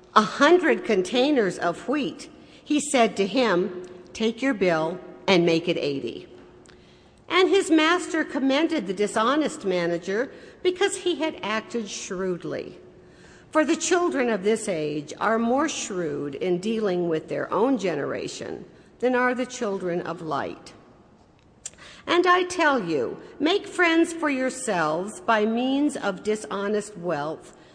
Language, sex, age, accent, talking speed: English, female, 50-69, American, 135 wpm